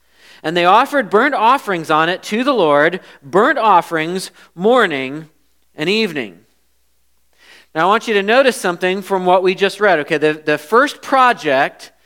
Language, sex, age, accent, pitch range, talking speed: English, male, 40-59, American, 160-230 Hz, 160 wpm